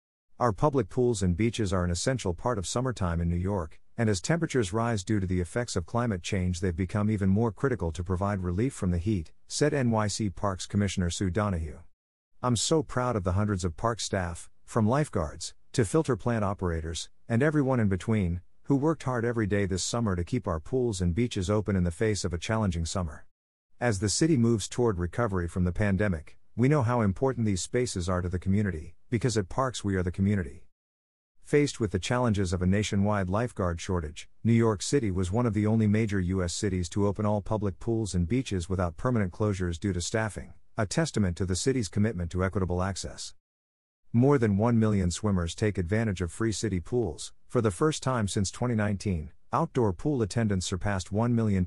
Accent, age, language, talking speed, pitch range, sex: American, 50-69, English, 200 wpm, 90-115 Hz, male